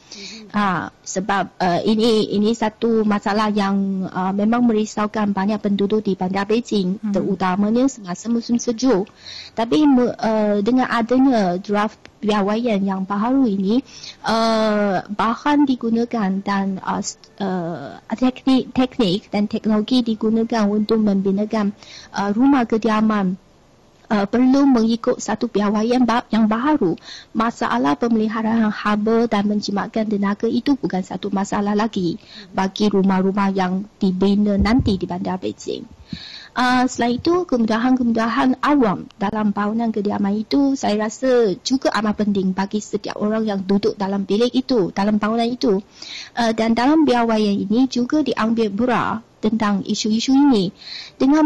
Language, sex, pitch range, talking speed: Malay, female, 200-245 Hz, 125 wpm